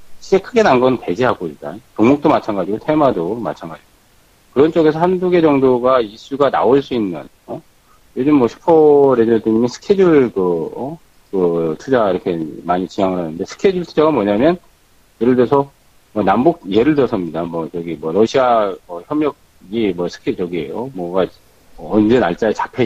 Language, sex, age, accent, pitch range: Korean, male, 40-59, native, 95-150 Hz